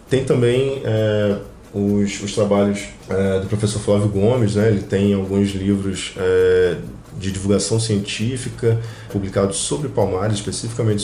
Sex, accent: male, Brazilian